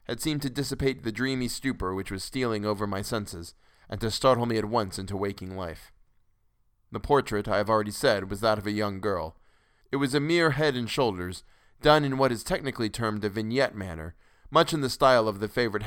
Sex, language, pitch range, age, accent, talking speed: male, English, 100-130 Hz, 20-39, American, 215 wpm